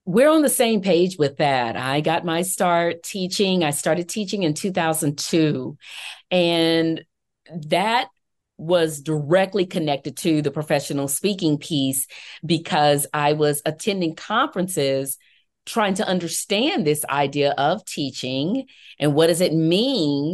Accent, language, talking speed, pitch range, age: American, English, 130 wpm, 150-195 Hz, 40-59